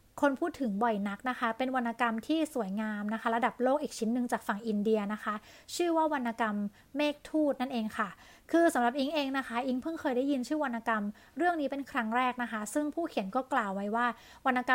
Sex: female